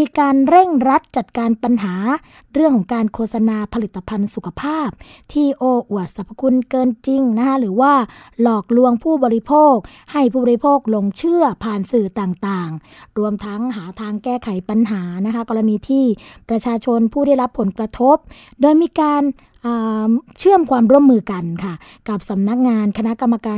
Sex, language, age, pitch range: female, Thai, 20-39, 200-250 Hz